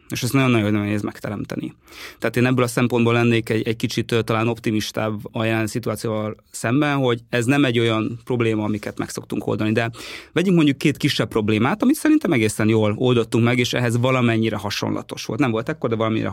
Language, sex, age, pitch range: Hungarian, male, 20-39, 105-120 Hz